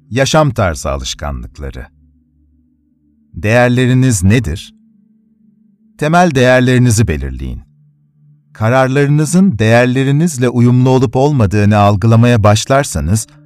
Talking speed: 65 wpm